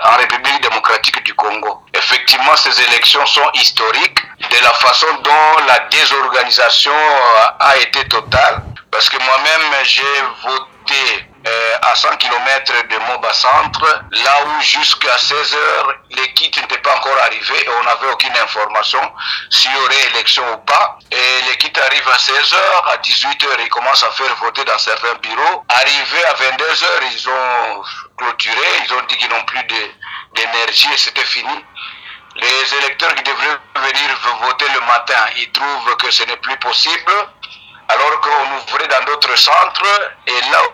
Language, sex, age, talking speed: French, male, 50-69, 155 wpm